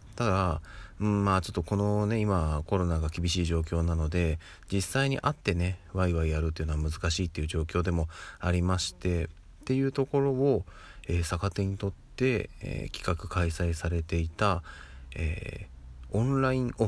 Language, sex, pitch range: Japanese, male, 80-100 Hz